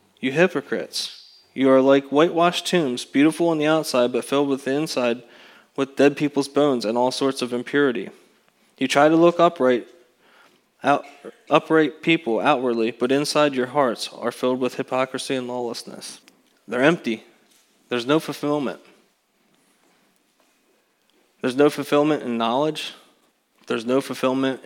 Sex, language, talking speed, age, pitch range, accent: male, English, 140 wpm, 20-39, 125-150 Hz, American